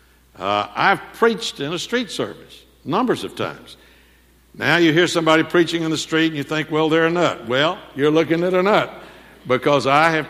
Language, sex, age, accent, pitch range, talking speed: English, male, 60-79, American, 130-170 Hz, 200 wpm